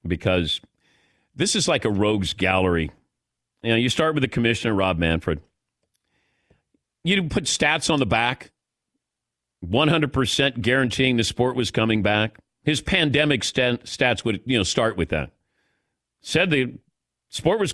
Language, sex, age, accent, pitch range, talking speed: English, male, 40-59, American, 110-140 Hz, 145 wpm